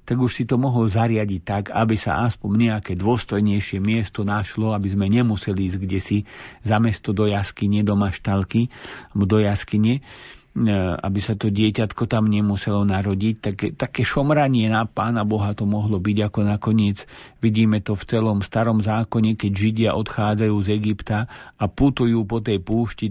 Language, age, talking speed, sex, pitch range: Slovak, 50-69, 160 wpm, male, 100-120 Hz